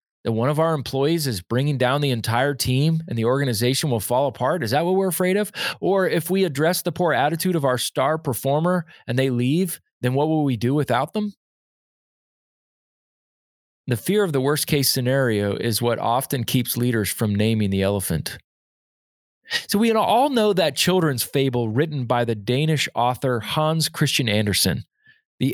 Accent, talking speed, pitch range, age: American, 175 wpm, 120-165 Hz, 20-39